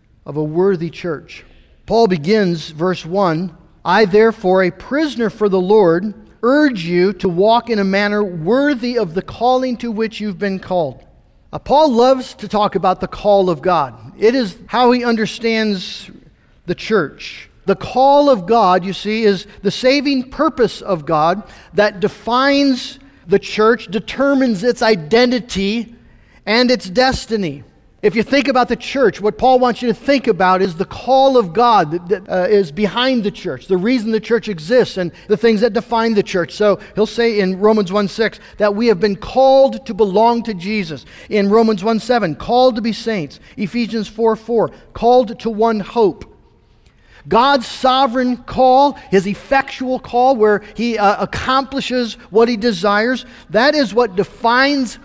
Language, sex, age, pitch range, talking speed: English, male, 50-69, 195-245 Hz, 165 wpm